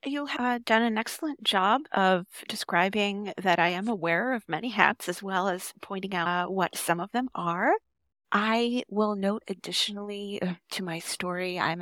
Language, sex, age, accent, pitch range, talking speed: English, female, 30-49, American, 175-205 Hz, 170 wpm